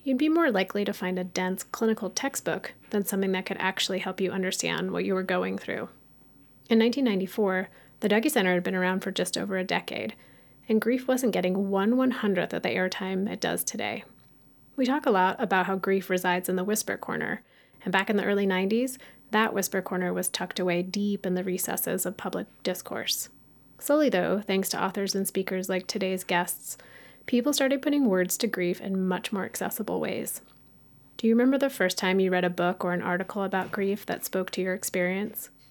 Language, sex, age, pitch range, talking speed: English, female, 30-49, 185-215 Hz, 200 wpm